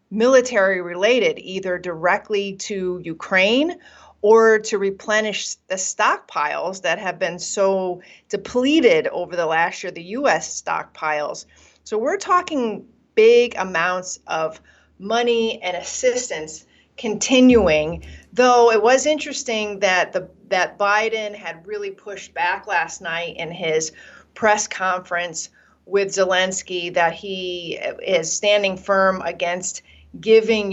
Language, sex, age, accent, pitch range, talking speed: English, female, 40-59, American, 185-225 Hz, 115 wpm